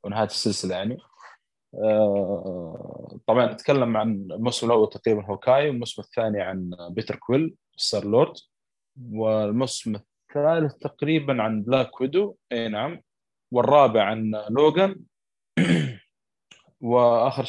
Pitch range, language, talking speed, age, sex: 105-130 Hz, Arabic, 105 wpm, 20-39, male